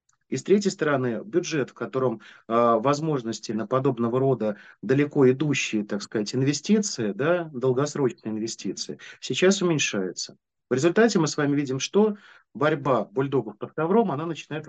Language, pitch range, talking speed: Russian, 120-155 Hz, 145 wpm